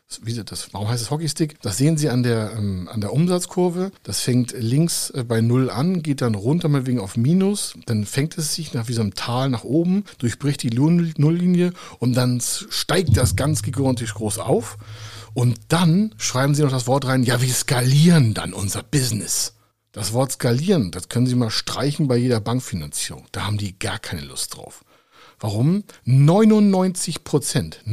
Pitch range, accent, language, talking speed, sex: 110-150 Hz, German, German, 180 wpm, male